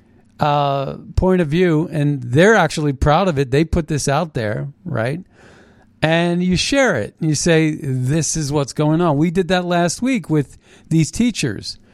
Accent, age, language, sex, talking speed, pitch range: American, 50-69, English, male, 175 wpm, 120-170 Hz